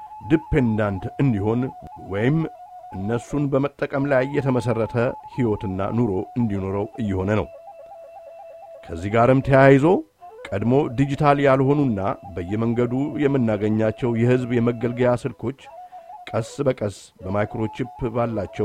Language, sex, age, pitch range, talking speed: English, male, 50-69, 110-140 Hz, 70 wpm